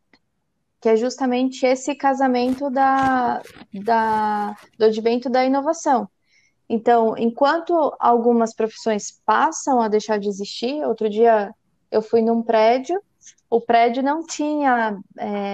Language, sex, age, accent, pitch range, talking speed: Portuguese, female, 20-39, Brazilian, 215-255 Hz, 110 wpm